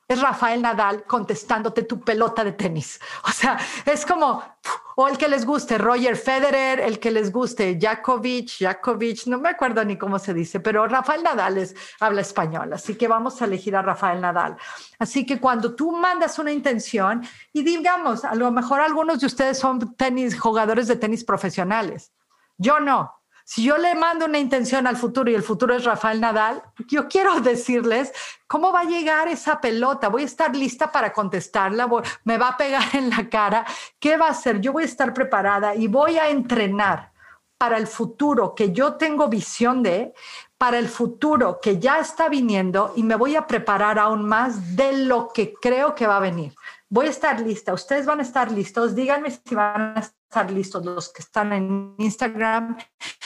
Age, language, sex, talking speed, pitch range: 40-59, Spanish, female, 190 wpm, 215-275 Hz